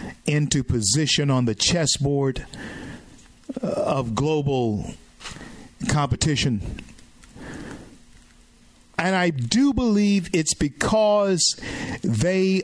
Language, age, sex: English, 50-69, male